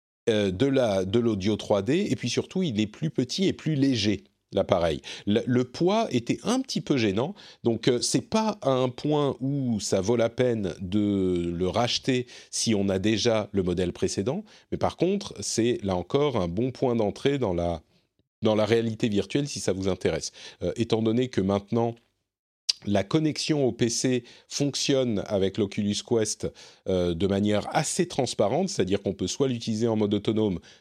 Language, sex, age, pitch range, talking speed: French, male, 40-59, 95-125 Hz, 185 wpm